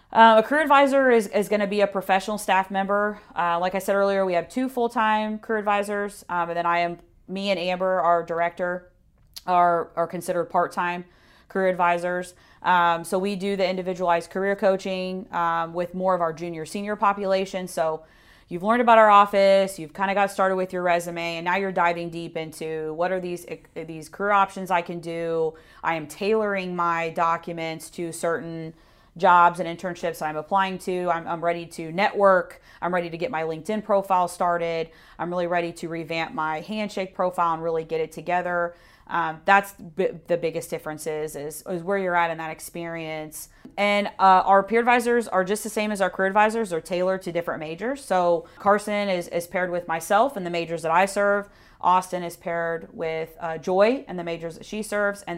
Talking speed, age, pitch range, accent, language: 200 wpm, 30-49, 170-195 Hz, American, English